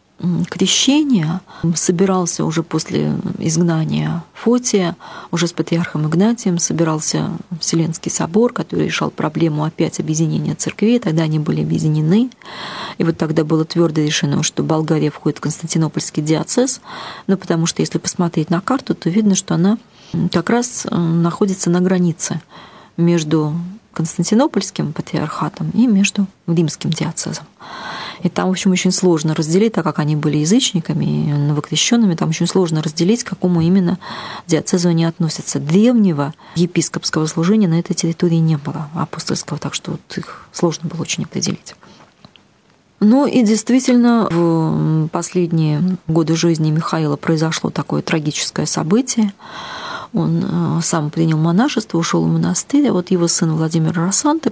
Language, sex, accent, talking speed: Russian, female, native, 135 wpm